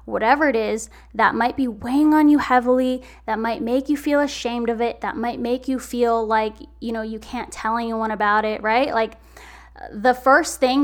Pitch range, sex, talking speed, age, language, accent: 225-280 Hz, female, 205 wpm, 10-29, English, American